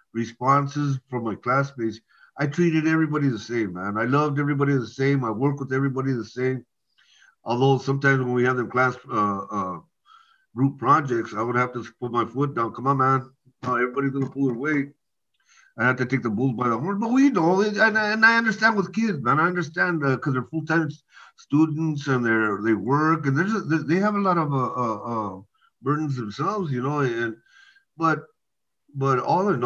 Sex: male